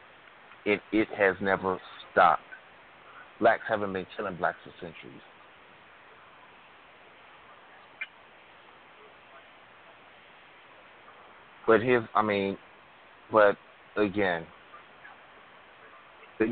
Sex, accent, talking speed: male, American, 70 wpm